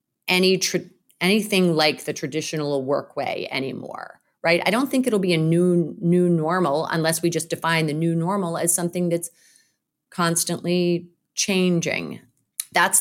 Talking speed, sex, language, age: 145 wpm, female, English, 30-49